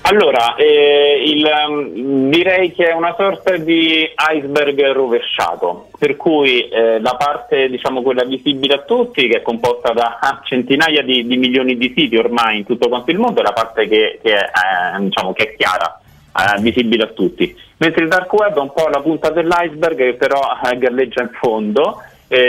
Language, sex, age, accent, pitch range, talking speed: Italian, male, 30-49, native, 120-165 Hz, 190 wpm